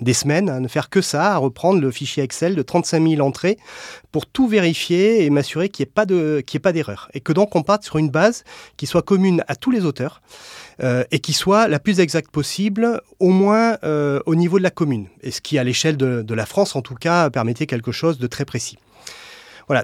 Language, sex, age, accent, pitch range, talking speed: English, male, 30-49, French, 125-170 Hz, 230 wpm